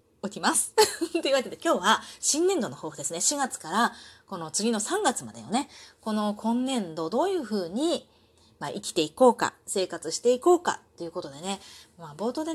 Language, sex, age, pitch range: Japanese, female, 30-49, 175-270 Hz